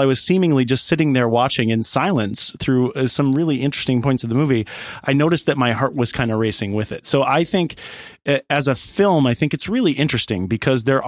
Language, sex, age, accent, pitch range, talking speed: English, male, 30-49, American, 115-145 Hz, 220 wpm